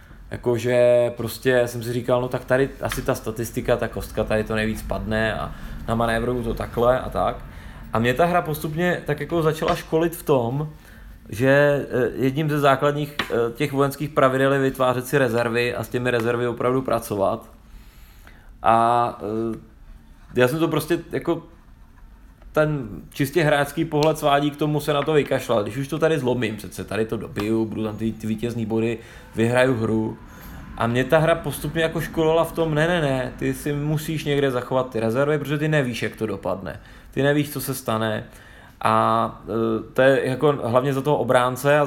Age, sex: 20-39, male